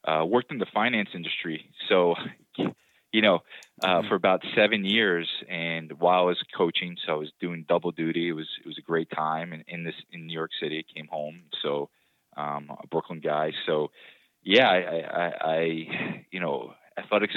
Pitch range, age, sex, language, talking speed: 75-85 Hz, 20-39, male, English, 195 wpm